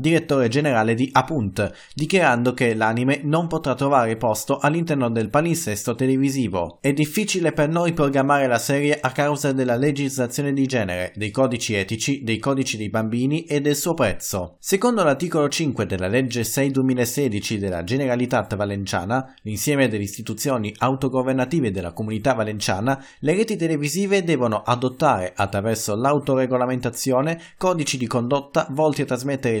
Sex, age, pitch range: male, 30-49, 115-145 Hz